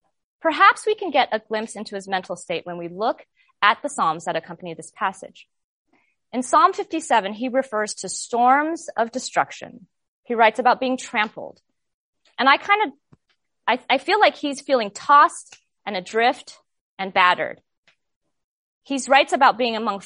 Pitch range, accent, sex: 195-270 Hz, American, female